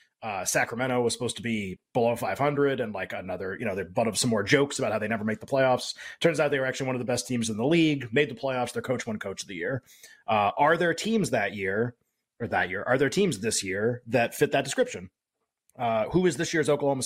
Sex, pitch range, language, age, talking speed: male, 120-150 Hz, English, 30-49, 255 wpm